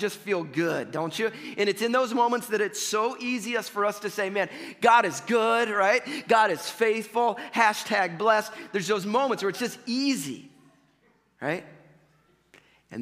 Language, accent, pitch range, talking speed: English, American, 130-190 Hz, 170 wpm